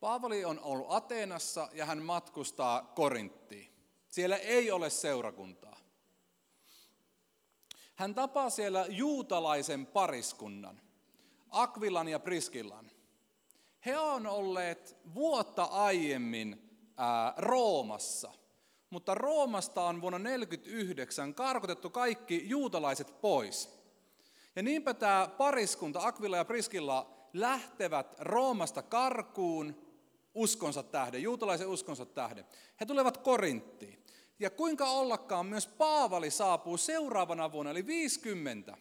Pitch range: 170-245 Hz